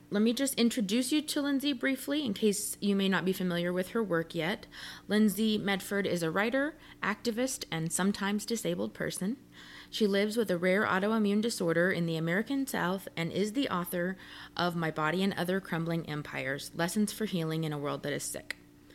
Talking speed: 190 wpm